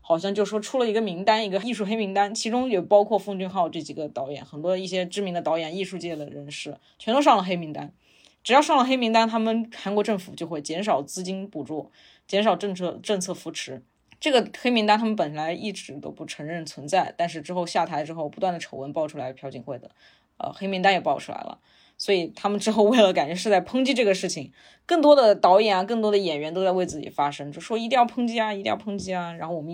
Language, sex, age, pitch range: Chinese, female, 20-39, 155-205 Hz